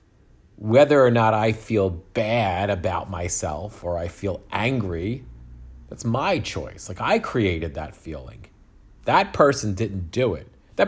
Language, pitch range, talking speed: English, 95-125 Hz, 145 wpm